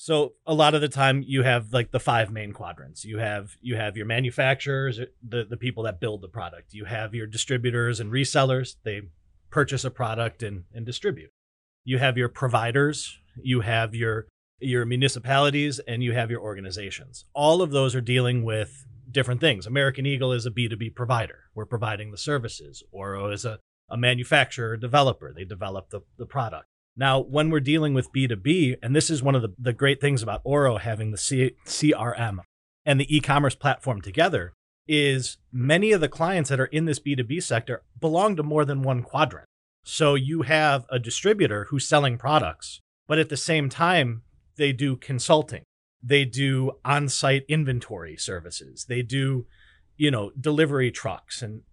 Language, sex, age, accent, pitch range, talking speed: English, male, 30-49, American, 110-140 Hz, 175 wpm